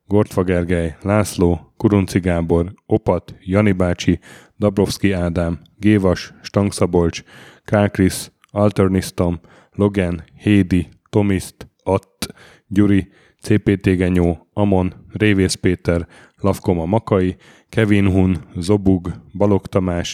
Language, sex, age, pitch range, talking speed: Hungarian, male, 10-29, 90-105 Hz, 85 wpm